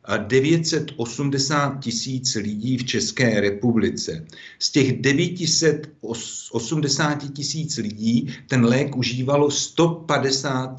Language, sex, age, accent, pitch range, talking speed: Czech, male, 50-69, native, 110-135 Hz, 85 wpm